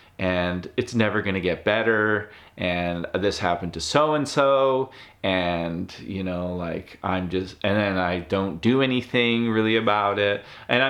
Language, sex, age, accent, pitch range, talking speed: English, male, 30-49, American, 90-115 Hz, 165 wpm